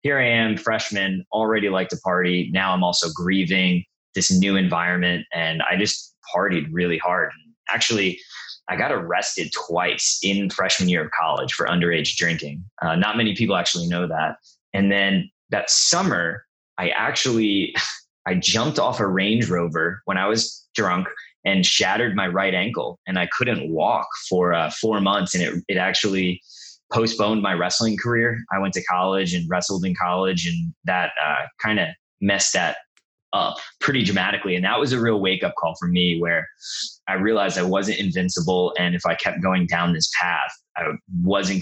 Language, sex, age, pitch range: English, male, 20-39, 90-105 Hz